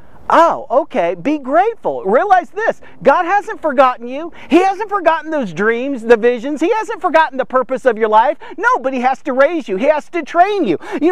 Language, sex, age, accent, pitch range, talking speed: English, male, 40-59, American, 215-315 Hz, 205 wpm